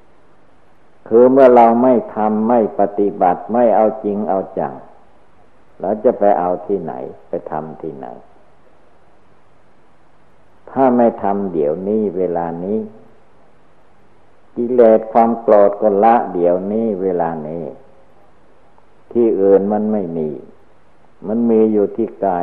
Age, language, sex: 60-79, Thai, male